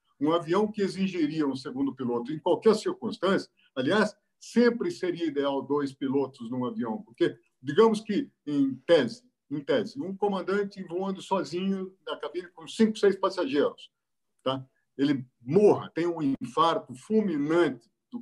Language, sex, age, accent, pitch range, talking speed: Portuguese, male, 50-69, Brazilian, 145-220 Hz, 140 wpm